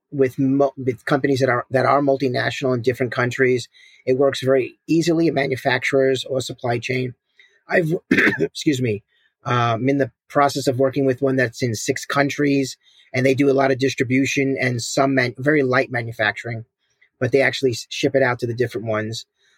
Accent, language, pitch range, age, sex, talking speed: American, English, 130-150 Hz, 40-59, male, 185 wpm